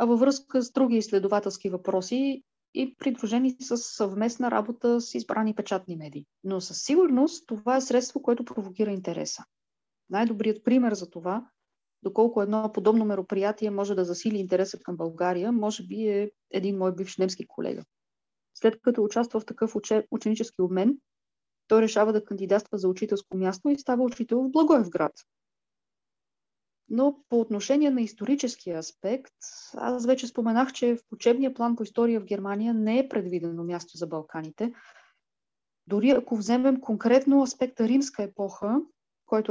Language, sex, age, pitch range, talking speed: Bulgarian, female, 20-39, 195-245 Hz, 145 wpm